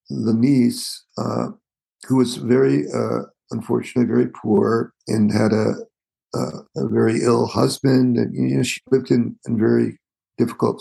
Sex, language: male, English